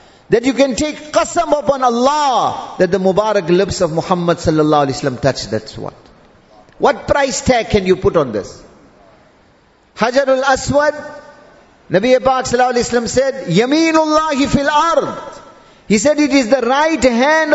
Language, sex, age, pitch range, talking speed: English, male, 50-69, 185-275 Hz, 160 wpm